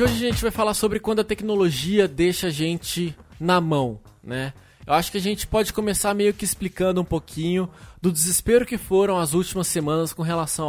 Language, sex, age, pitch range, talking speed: Portuguese, male, 20-39, 150-190 Hz, 200 wpm